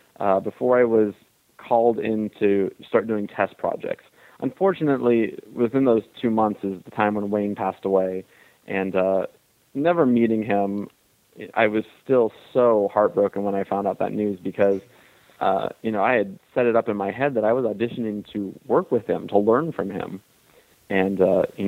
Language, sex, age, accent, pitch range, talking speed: English, male, 20-39, American, 100-115 Hz, 185 wpm